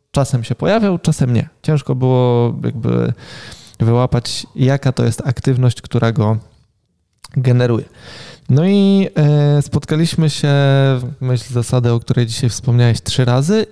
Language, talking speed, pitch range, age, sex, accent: Polish, 125 wpm, 120-145 Hz, 20-39, male, native